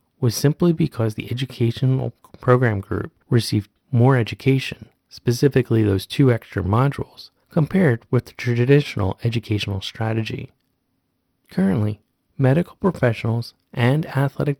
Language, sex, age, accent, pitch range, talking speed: English, male, 30-49, American, 105-140 Hz, 105 wpm